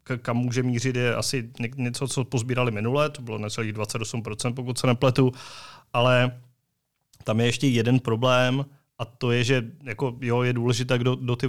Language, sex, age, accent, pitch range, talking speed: Czech, male, 30-49, native, 115-130 Hz, 170 wpm